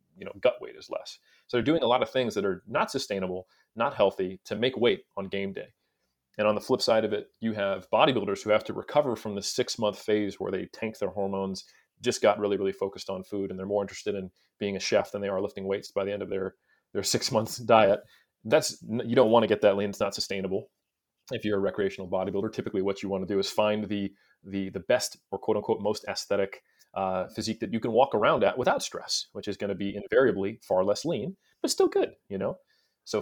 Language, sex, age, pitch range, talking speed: English, male, 30-49, 95-110 Hz, 245 wpm